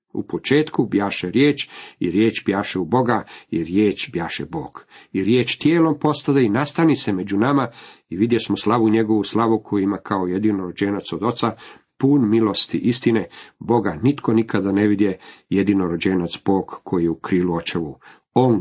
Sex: male